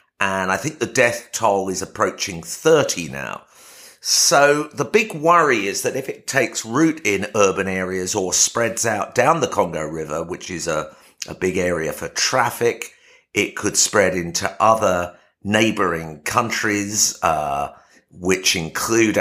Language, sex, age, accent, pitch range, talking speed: English, male, 50-69, British, 90-120 Hz, 150 wpm